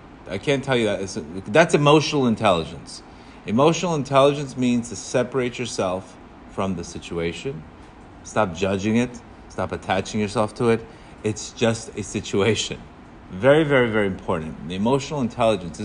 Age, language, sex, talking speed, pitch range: 30-49, English, male, 140 wpm, 100-135 Hz